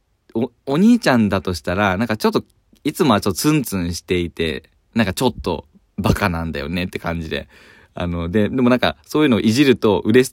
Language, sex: Japanese, male